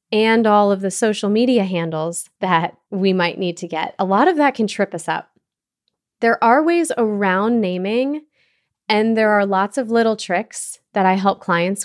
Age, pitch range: 20-39, 185-230 Hz